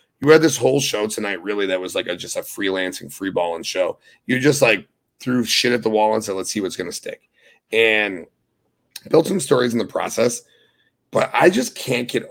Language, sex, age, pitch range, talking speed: English, male, 30-49, 100-140 Hz, 220 wpm